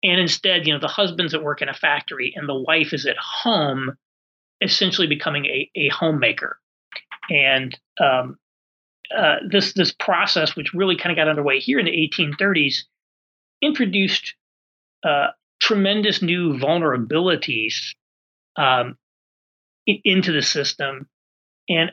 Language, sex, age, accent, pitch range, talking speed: English, male, 40-59, American, 145-185 Hz, 130 wpm